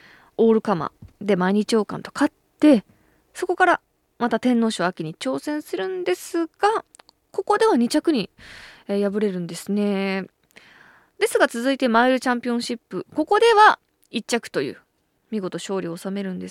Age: 20-39